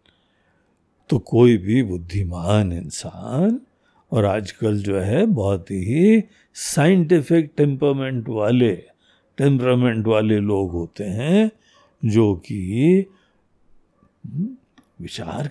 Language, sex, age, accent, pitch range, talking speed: Hindi, male, 60-79, native, 105-165 Hz, 85 wpm